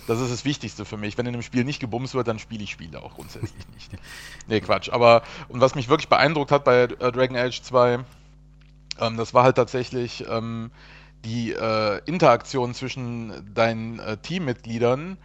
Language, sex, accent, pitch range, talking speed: German, male, German, 120-145 Hz, 185 wpm